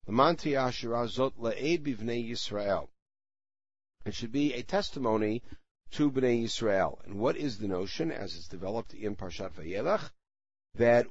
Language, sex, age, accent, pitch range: English, male, 50-69, American, 100-130 Hz